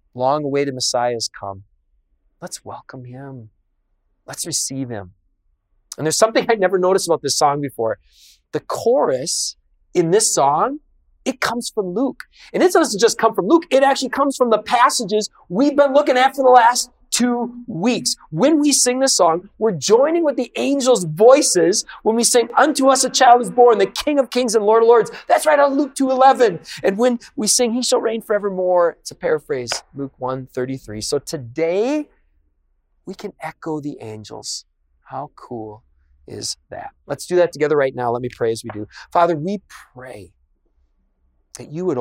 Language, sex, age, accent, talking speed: English, male, 30-49, American, 180 wpm